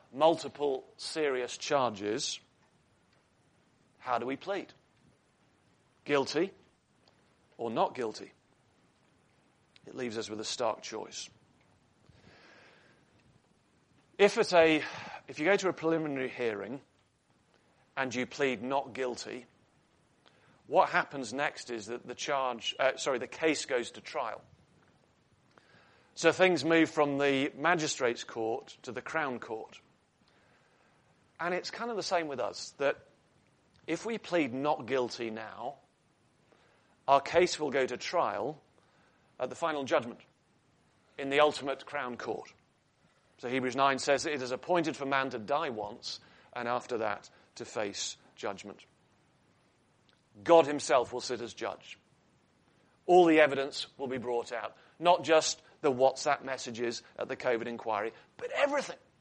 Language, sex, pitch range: English, male, 125-160 Hz